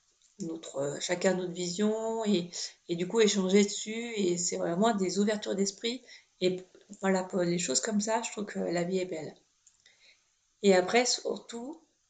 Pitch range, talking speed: 185-230 Hz, 165 wpm